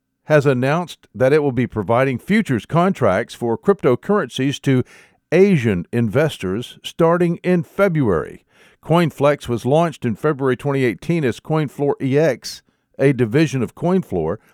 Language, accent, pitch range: English, American, 115-155 Hz